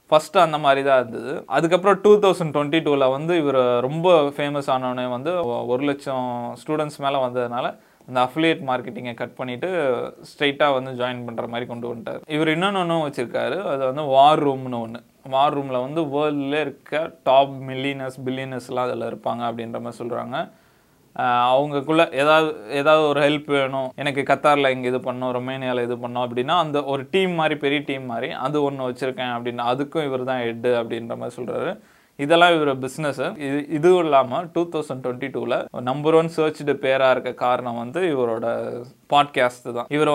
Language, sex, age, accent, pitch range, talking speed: Tamil, male, 20-39, native, 125-150 Hz, 165 wpm